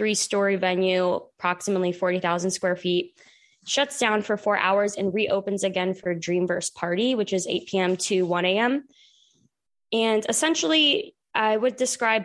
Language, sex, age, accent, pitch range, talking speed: English, female, 20-39, American, 185-215 Hz, 140 wpm